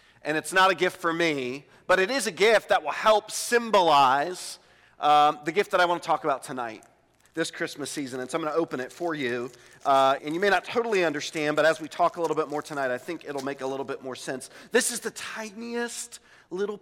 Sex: male